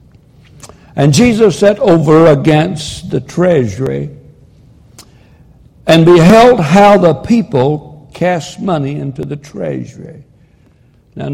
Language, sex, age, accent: English, male, 60-79, American